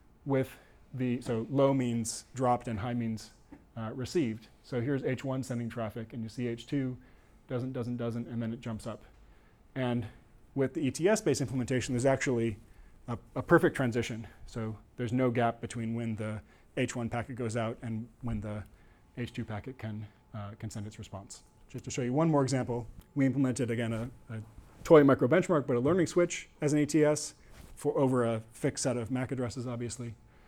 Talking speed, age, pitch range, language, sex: 180 wpm, 30-49, 115-130 Hz, English, male